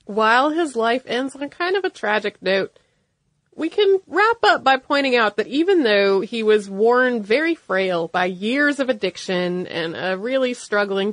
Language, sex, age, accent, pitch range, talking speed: English, female, 30-49, American, 190-255 Hz, 180 wpm